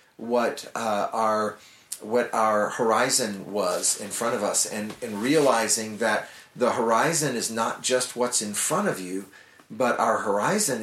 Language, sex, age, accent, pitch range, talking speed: English, male, 40-59, American, 105-125 Hz, 155 wpm